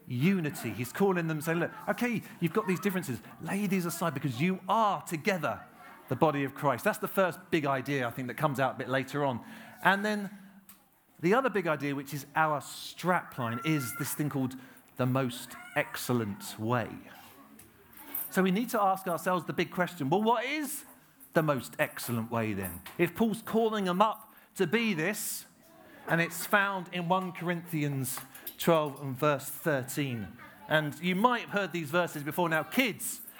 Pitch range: 150-200 Hz